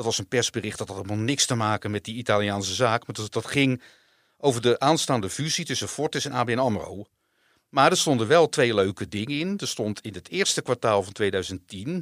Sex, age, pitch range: male, 50-69, 105-140 Hz